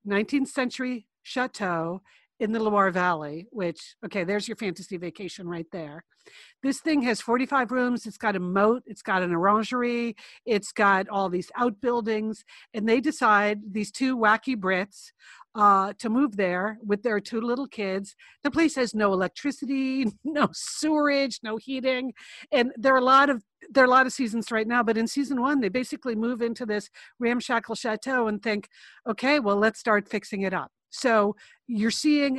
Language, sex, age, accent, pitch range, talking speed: English, female, 50-69, American, 205-255 Hz, 175 wpm